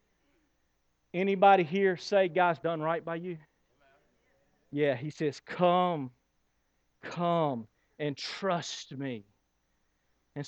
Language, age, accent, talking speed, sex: English, 40-59, American, 95 wpm, male